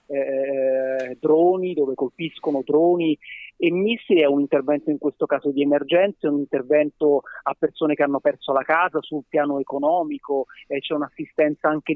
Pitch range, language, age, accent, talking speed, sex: 145-175 Hz, Italian, 30-49, native, 160 wpm, male